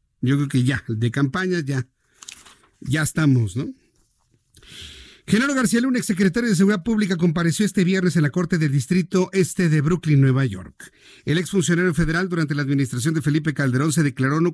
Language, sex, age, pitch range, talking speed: Spanish, male, 50-69, 140-185 Hz, 175 wpm